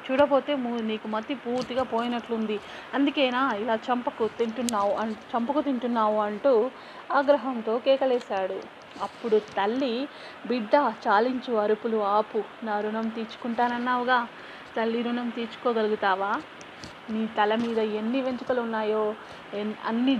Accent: native